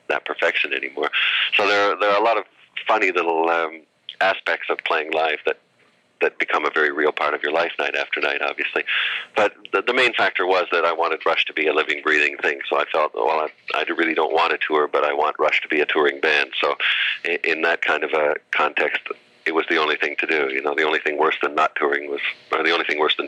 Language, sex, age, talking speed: English, male, 40-59, 255 wpm